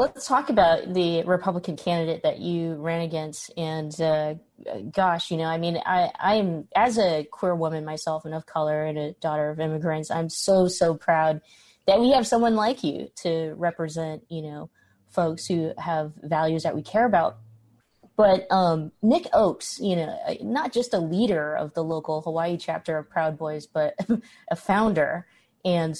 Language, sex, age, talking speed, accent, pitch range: English, female, 30-49, 175 wpm, American, 155-185 Hz